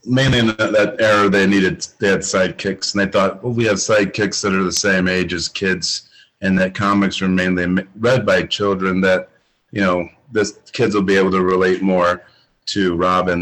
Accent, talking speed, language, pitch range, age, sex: American, 195 wpm, English, 90-105 Hz, 40-59, male